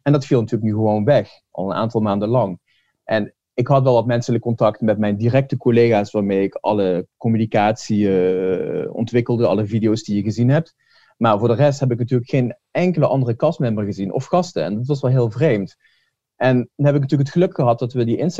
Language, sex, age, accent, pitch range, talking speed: Dutch, male, 30-49, Dutch, 110-140 Hz, 210 wpm